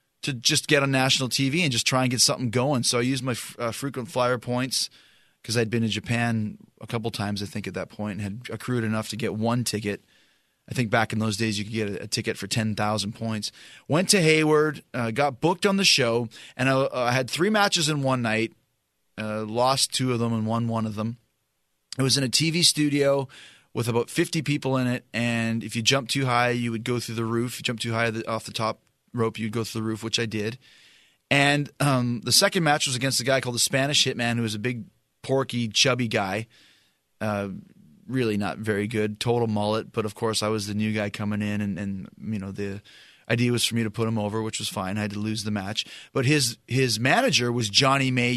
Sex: male